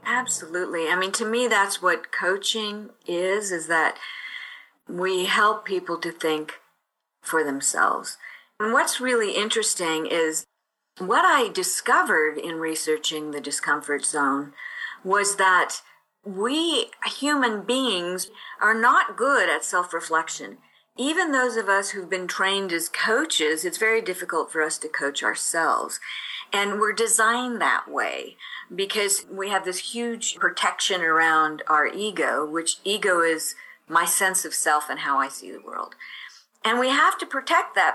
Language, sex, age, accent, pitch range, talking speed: English, female, 50-69, American, 160-230 Hz, 145 wpm